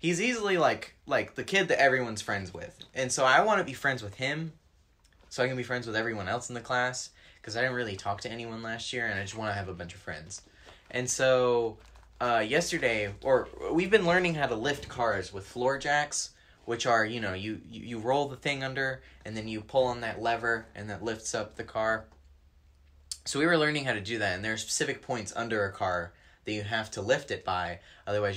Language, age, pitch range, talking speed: English, 20-39, 95-125 Hz, 235 wpm